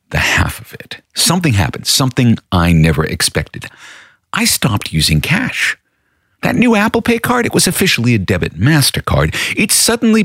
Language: English